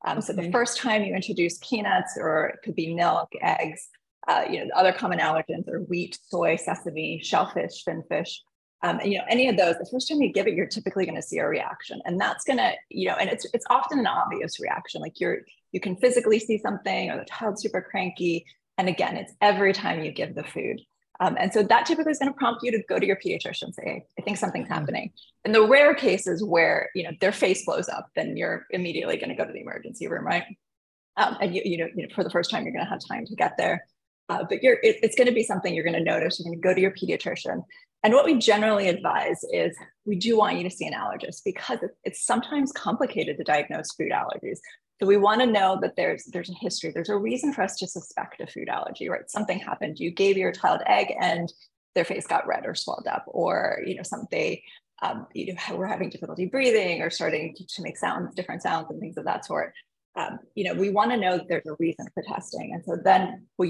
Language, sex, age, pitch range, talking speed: English, female, 20-39, 180-250 Hz, 245 wpm